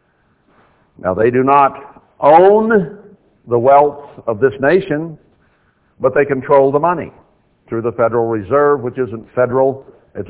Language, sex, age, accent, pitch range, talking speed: English, male, 60-79, American, 115-150 Hz, 135 wpm